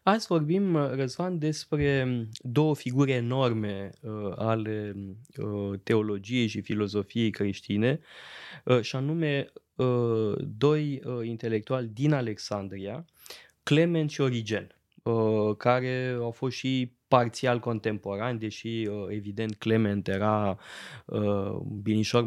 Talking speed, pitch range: 85 wpm, 105-130 Hz